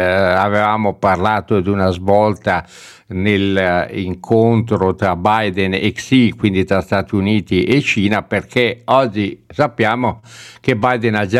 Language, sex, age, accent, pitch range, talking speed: Italian, male, 60-79, native, 105-130 Hz, 120 wpm